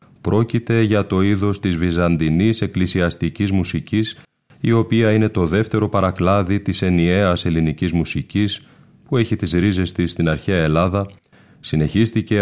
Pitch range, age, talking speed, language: 85-105 Hz, 30-49, 130 wpm, Greek